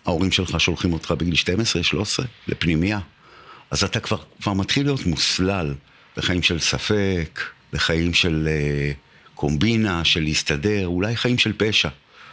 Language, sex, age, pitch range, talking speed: Hebrew, male, 50-69, 85-110 Hz, 130 wpm